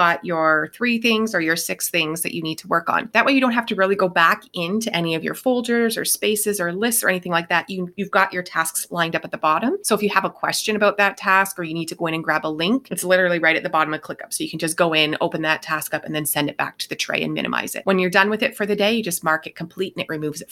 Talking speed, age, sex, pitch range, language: 320 wpm, 30-49, female, 160-200 Hz, English